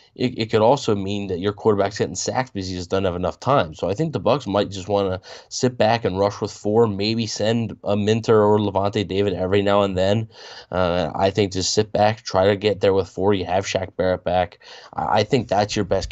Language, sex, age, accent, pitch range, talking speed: English, male, 20-39, American, 95-115 Hz, 245 wpm